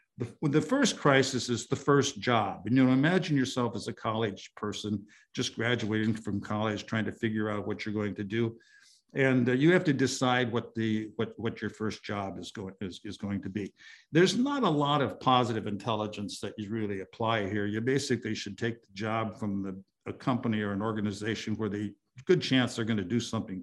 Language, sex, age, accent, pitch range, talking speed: English, male, 60-79, American, 110-145 Hz, 210 wpm